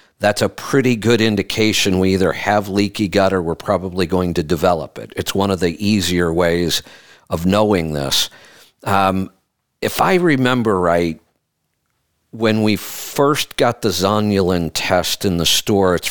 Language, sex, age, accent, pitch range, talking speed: English, male, 50-69, American, 90-115 Hz, 155 wpm